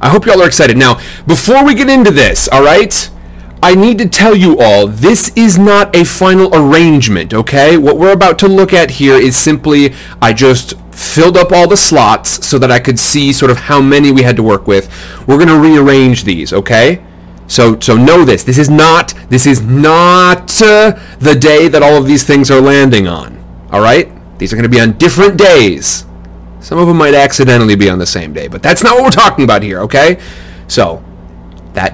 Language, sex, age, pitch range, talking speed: English, male, 30-49, 110-170 Hz, 215 wpm